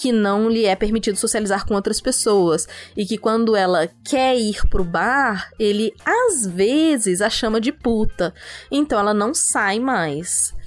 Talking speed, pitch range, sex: 165 wpm, 195-250 Hz, female